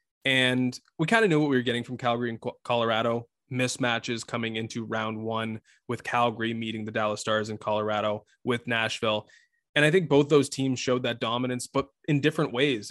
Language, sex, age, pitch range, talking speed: English, male, 20-39, 115-140 Hz, 190 wpm